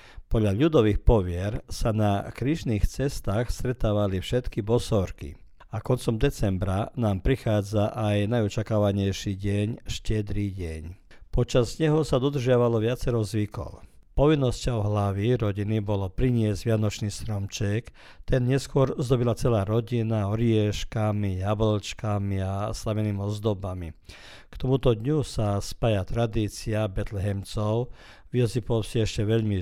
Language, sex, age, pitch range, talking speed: Croatian, male, 50-69, 100-115 Hz, 115 wpm